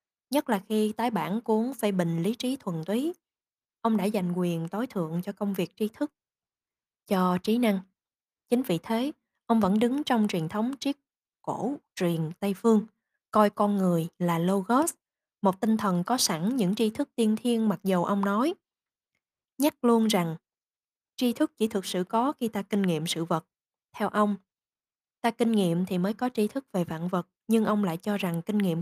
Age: 20-39